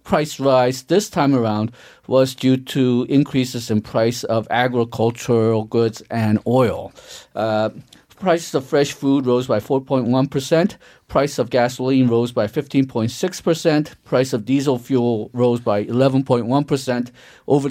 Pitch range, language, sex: 125-150 Hz, Korean, male